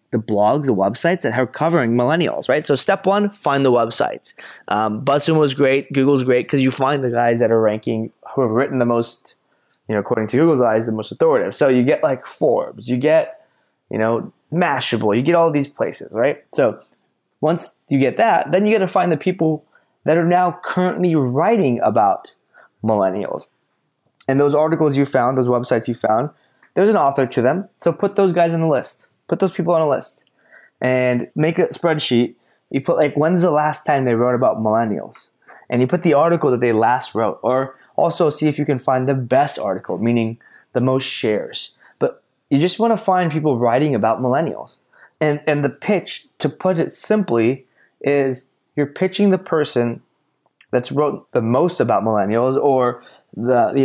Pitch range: 125-165 Hz